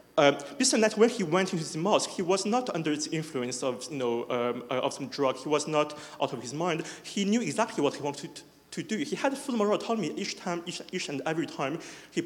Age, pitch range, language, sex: 30-49, 130-200 Hz, English, male